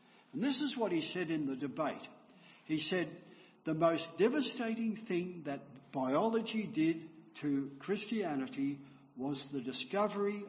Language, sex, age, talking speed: English, male, 60-79, 130 wpm